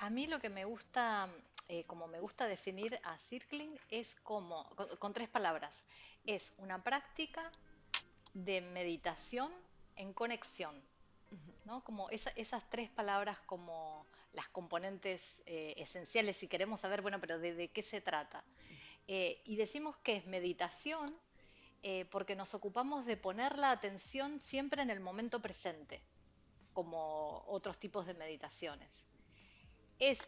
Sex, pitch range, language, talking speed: female, 185-260 Hz, Spanish, 145 wpm